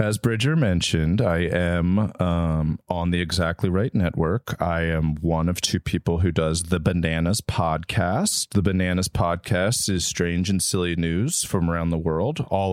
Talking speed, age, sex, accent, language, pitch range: 165 wpm, 30-49, male, American, English, 90-130 Hz